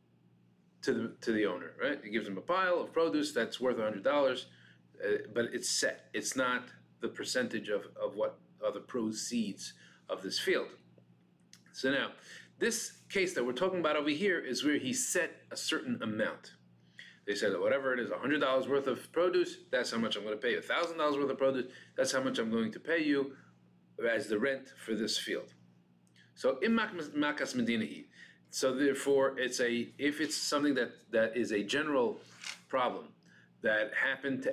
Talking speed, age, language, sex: 185 wpm, 40-59, English, male